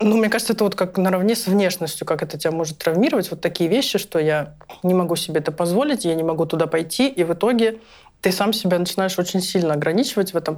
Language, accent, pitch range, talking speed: Russian, native, 170-210 Hz, 235 wpm